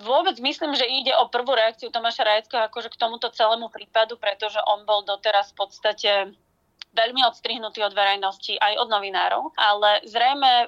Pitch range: 200-240 Hz